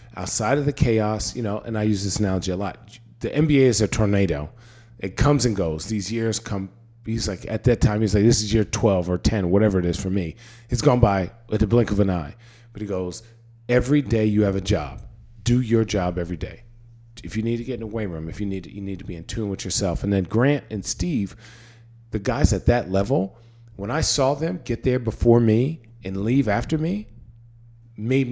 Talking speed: 235 wpm